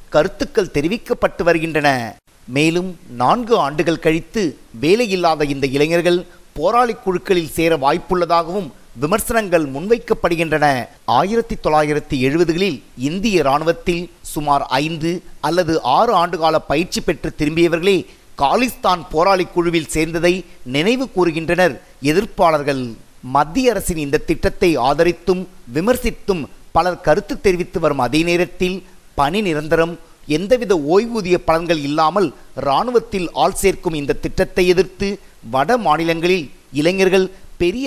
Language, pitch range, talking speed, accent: Tamil, 155-190 Hz, 100 wpm, native